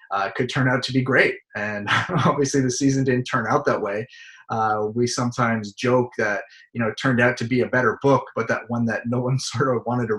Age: 30-49